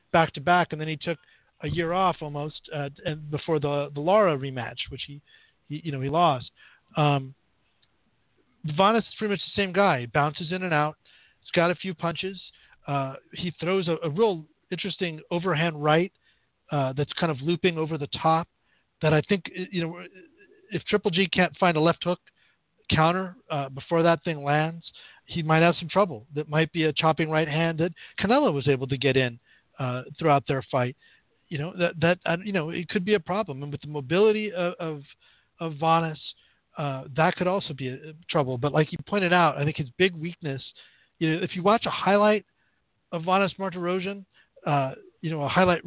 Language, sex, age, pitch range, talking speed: English, male, 40-59, 150-180 Hz, 205 wpm